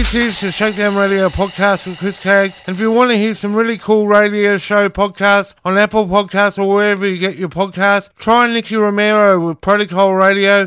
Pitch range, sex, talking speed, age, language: 195-210 Hz, male, 200 wpm, 50-69, English